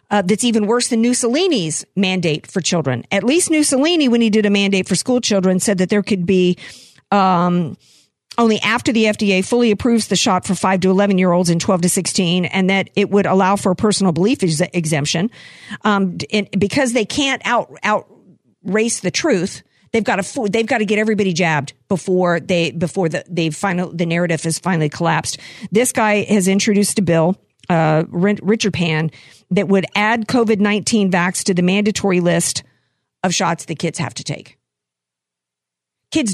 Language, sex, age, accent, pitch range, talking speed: English, female, 50-69, American, 165-215 Hz, 180 wpm